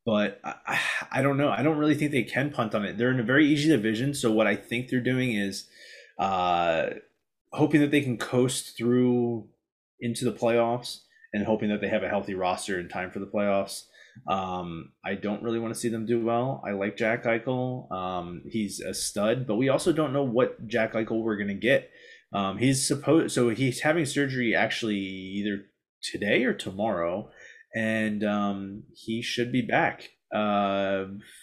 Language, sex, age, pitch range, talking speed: English, male, 20-39, 100-130 Hz, 185 wpm